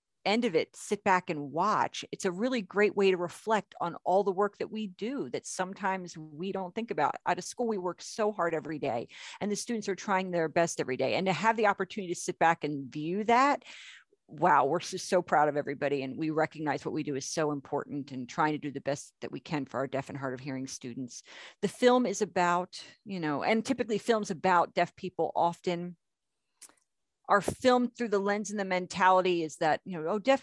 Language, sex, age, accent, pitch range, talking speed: English, female, 40-59, American, 160-215 Hz, 225 wpm